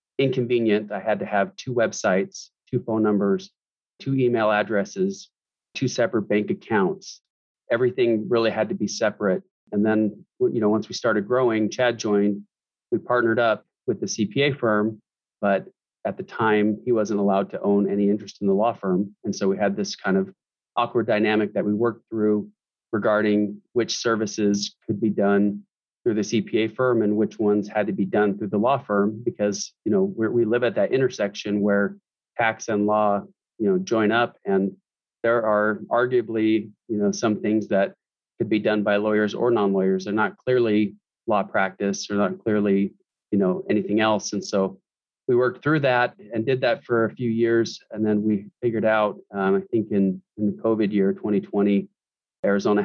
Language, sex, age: English, male, 30-49